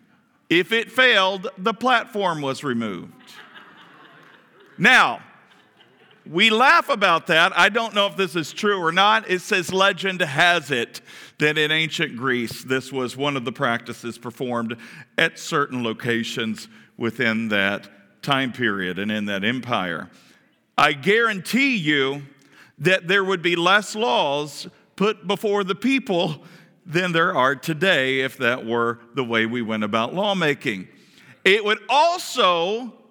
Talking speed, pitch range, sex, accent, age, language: 140 wpm, 130-200 Hz, male, American, 50-69, English